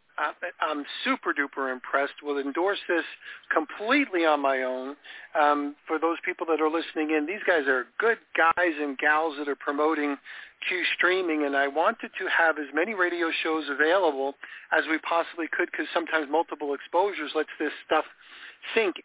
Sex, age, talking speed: male, 50-69, 165 wpm